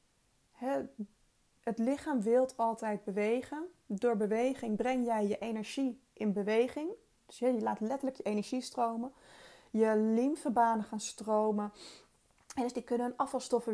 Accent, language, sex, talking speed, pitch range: Dutch, Dutch, female, 130 wpm, 215-265 Hz